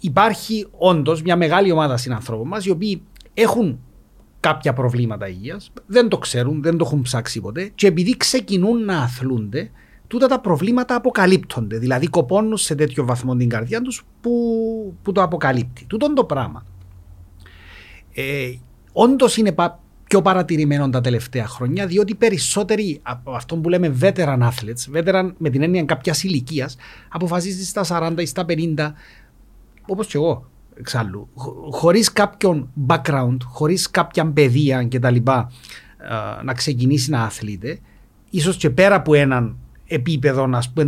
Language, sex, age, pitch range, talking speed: Greek, male, 40-59, 125-190 Hz, 150 wpm